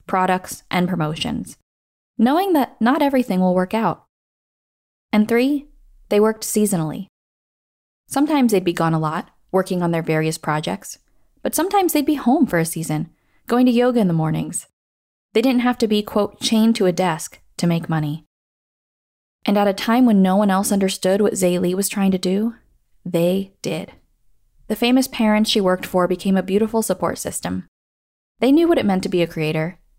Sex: female